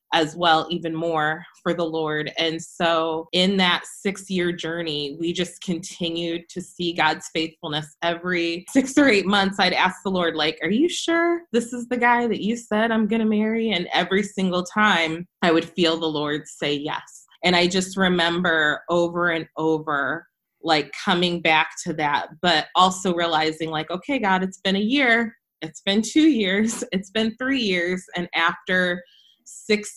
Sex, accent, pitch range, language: female, American, 160-190 Hz, English